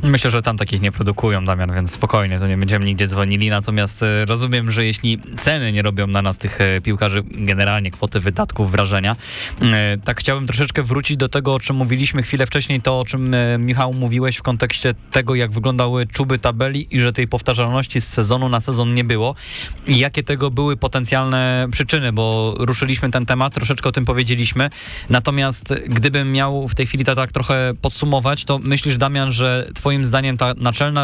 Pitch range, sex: 115-135 Hz, male